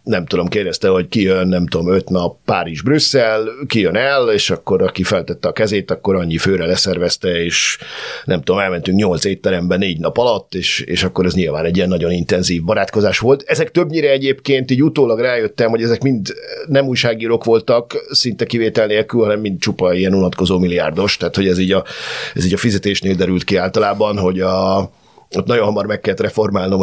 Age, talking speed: 50-69, 190 wpm